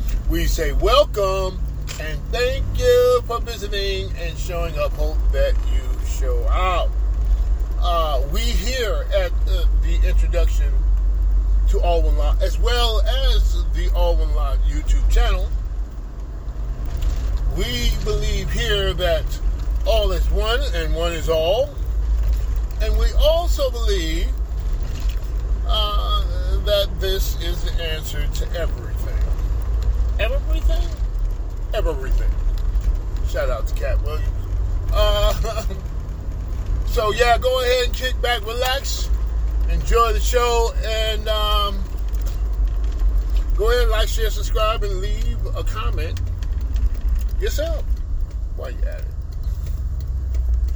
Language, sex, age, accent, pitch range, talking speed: English, male, 40-59, American, 70-100 Hz, 110 wpm